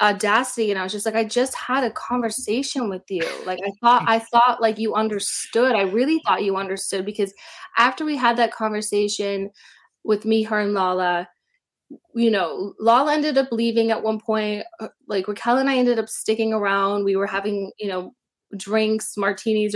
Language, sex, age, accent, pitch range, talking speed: English, female, 20-39, American, 200-235 Hz, 185 wpm